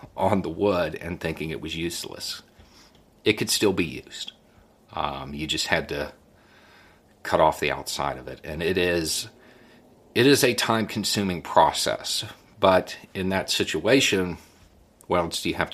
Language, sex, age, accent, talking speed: English, male, 40-59, American, 160 wpm